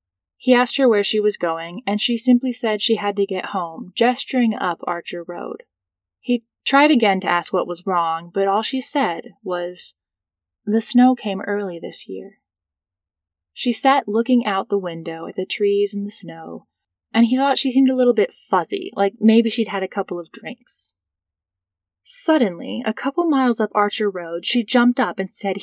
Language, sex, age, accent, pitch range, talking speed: English, female, 10-29, American, 170-245 Hz, 185 wpm